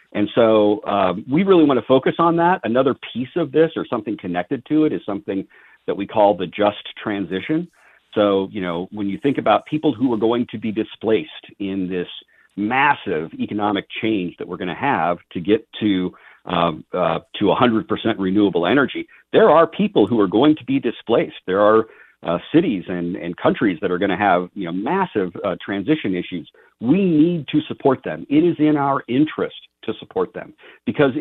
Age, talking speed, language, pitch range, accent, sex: 50-69, 195 wpm, English, 100-155 Hz, American, male